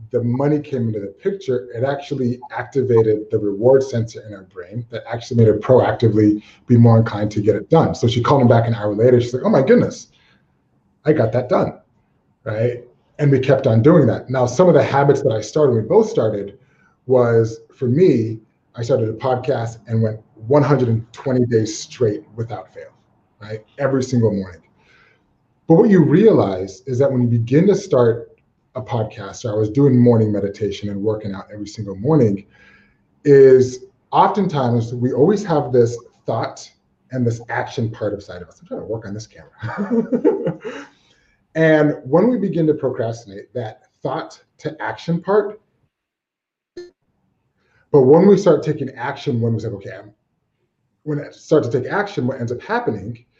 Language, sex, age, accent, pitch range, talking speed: English, male, 30-49, American, 110-140 Hz, 180 wpm